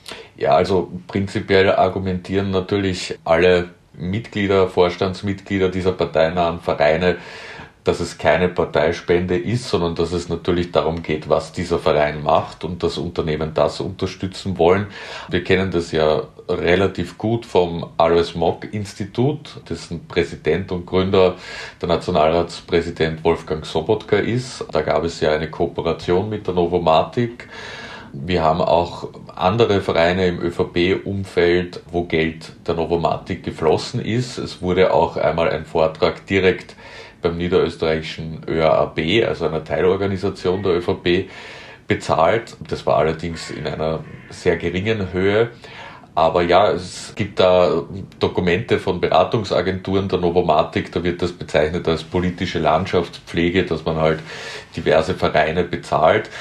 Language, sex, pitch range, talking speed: German, male, 85-95 Hz, 125 wpm